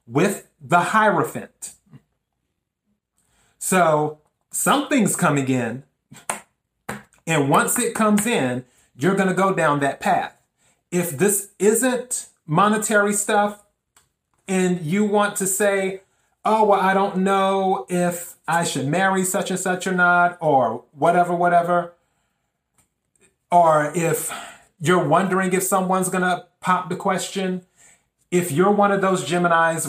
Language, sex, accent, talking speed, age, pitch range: English, male, American, 125 wpm, 30-49, 150-185 Hz